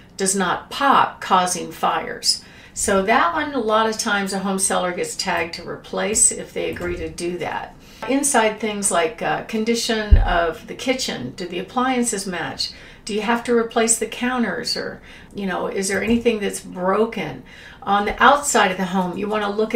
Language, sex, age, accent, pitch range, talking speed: English, female, 50-69, American, 190-235 Hz, 185 wpm